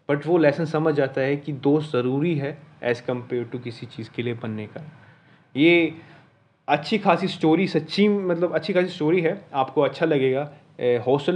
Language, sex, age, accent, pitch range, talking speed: Hindi, male, 30-49, native, 130-165 Hz, 180 wpm